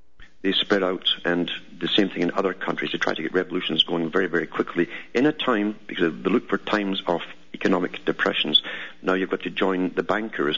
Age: 50-69